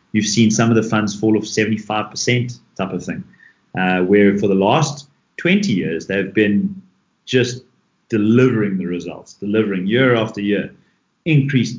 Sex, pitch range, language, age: male, 105-135 Hz, English, 30-49